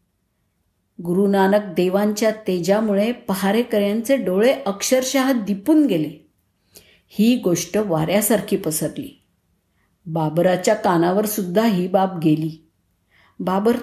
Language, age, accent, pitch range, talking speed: Marathi, 50-69, native, 165-215 Hz, 80 wpm